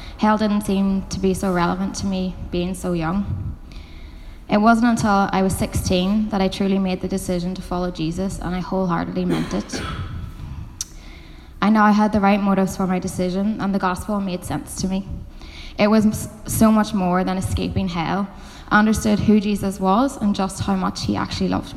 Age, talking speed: 10-29, 185 wpm